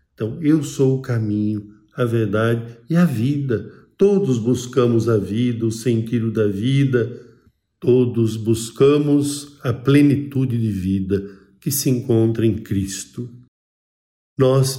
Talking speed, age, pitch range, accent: 120 wpm, 50-69, 105-125 Hz, Brazilian